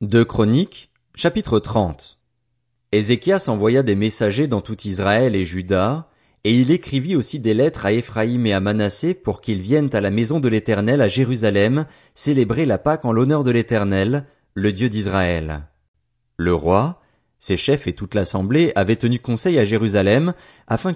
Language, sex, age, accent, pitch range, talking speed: French, male, 30-49, French, 100-140 Hz, 165 wpm